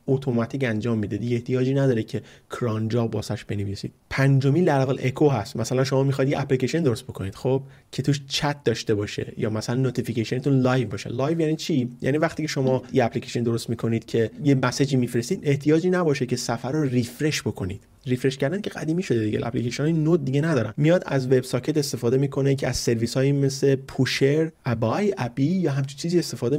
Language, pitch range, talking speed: Persian, 115-140 Hz, 185 wpm